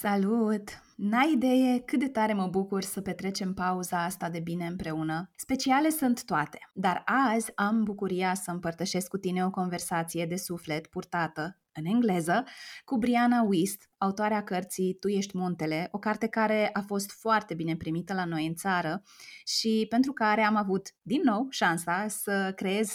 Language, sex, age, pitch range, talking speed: Romanian, female, 20-39, 175-220 Hz, 165 wpm